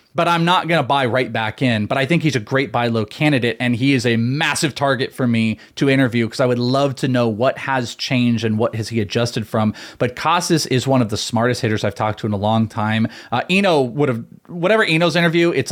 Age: 30-49